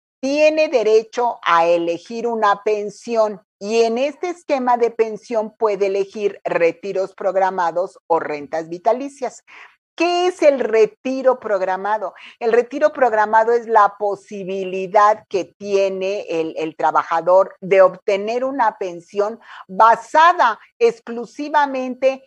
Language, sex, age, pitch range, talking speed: Spanish, female, 50-69, 185-245 Hz, 110 wpm